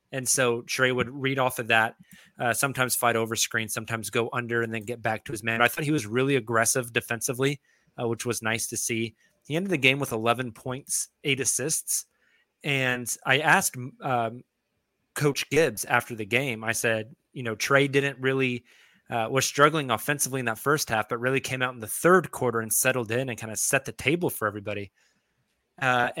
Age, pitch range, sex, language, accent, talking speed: 20-39, 115-130 Hz, male, English, American, 205 wpm